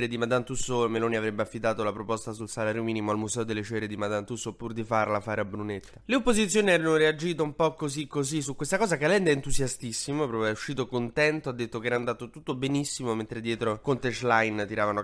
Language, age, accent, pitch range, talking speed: Italian, 20-39, native, 115-145 Hz, 220 wpm